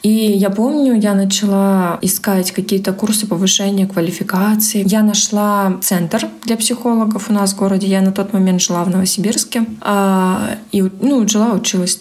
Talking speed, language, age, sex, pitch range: 150 wpm, Russian, 20-39, female, 190-220 Hz